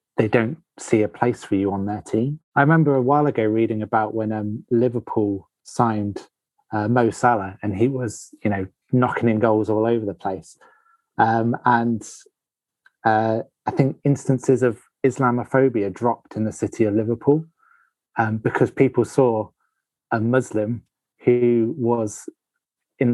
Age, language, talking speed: 20-39, English, 155 wpm